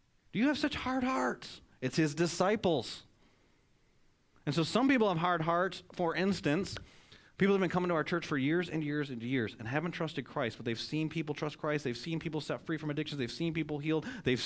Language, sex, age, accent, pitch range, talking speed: English, male, 30-49, American, 110-155 Hz, 215 wpm